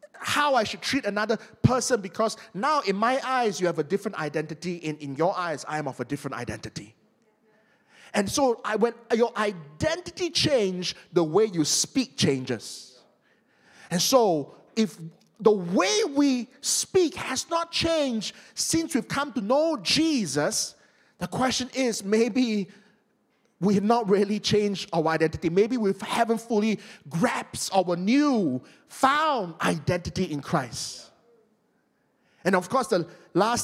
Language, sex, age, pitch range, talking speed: English, male, 30-49, 160-235 Hz, 145 wpm